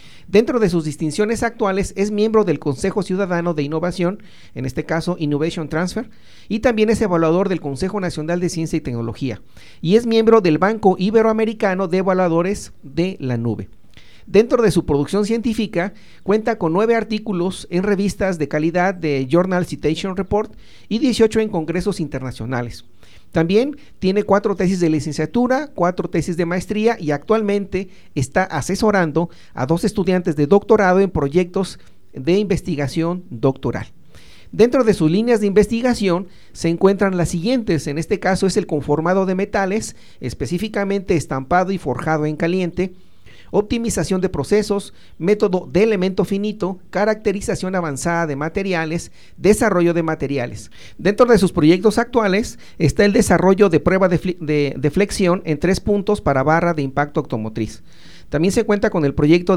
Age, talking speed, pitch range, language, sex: 40-59, 150 wpm, 155-205 Hz, Spanish, male